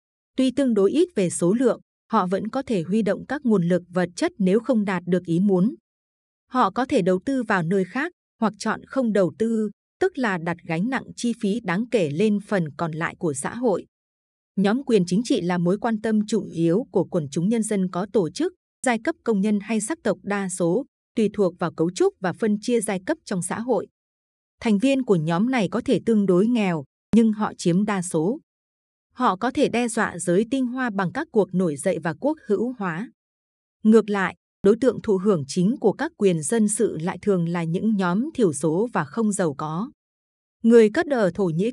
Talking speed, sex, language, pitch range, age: 220 wpm, female, Vietnamese, 180-230 Hz, 20-39